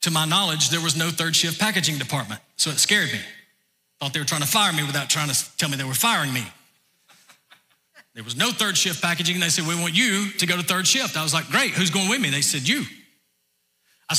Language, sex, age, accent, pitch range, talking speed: English, male, 40-59, American, 150-200 Hz, 245 wpm